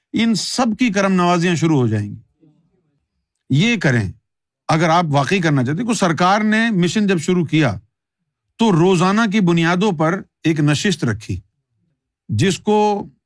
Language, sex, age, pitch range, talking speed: Urdu, male, 50-69, 140-190 Hz, 155 wpm